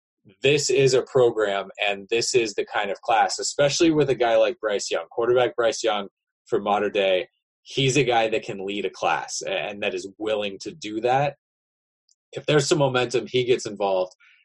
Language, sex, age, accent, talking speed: English, male, 20-39, American, 190 wpm